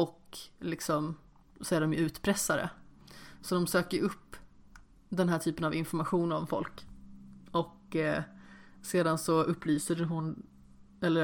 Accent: native